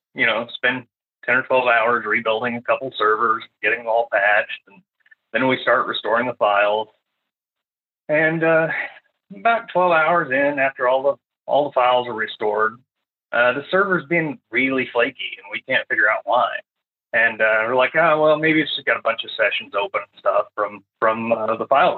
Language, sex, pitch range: English, male, 110-160 Hz